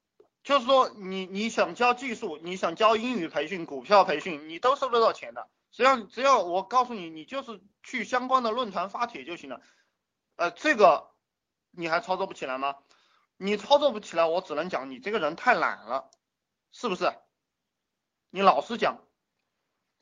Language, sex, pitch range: Chinese, male, 170-265 Hz